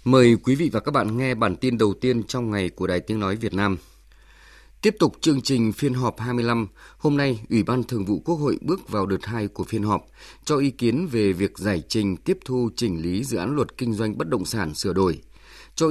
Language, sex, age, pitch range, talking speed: English, male, 20-39, 100-130 Hz, 240 wpm